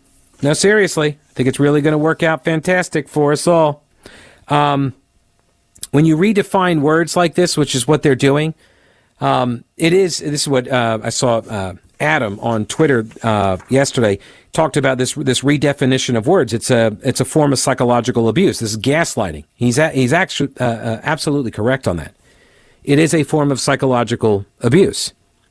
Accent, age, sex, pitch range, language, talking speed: American, 50-69, male, 120-155 Hz, English, 180 wpm